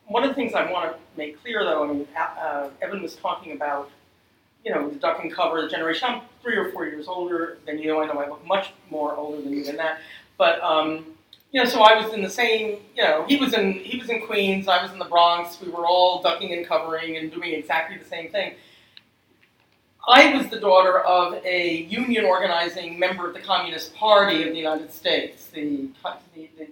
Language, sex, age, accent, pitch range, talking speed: English, female, 40-59, American, 155-205 Hz, 230 wpm